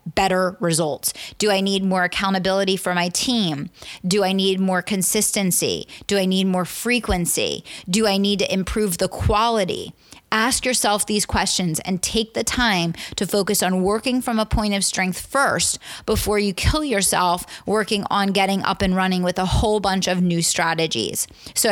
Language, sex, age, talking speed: English, female, 30-49, 175 wpm